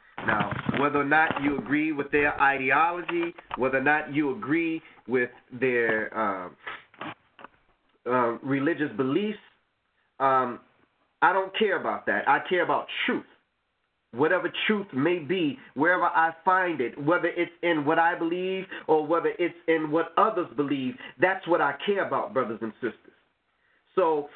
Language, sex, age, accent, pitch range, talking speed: English, male, 30-49, American, 135-195 Hz, 150 wpm